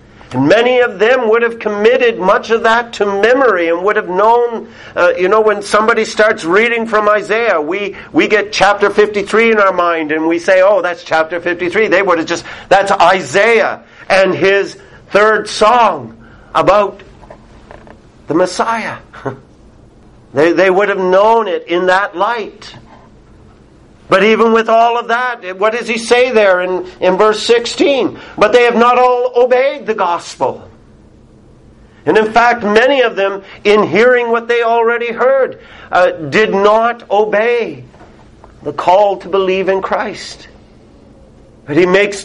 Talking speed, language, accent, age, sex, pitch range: 155 wpm, English, American, 50-69, male, 190-235 Hz